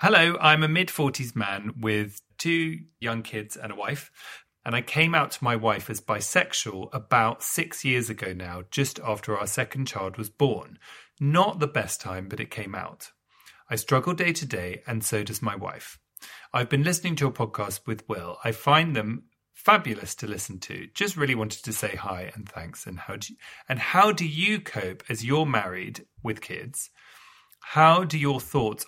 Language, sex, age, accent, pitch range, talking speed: English, male, 30-49, British, 110-150 Hz, 190 wpm